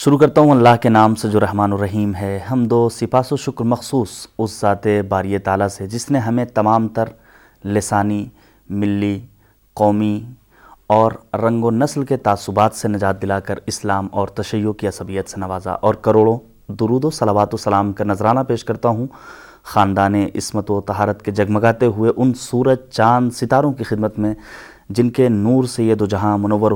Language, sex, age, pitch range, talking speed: Urdu, male, 30-49, 100-120 Hz, 180 wpm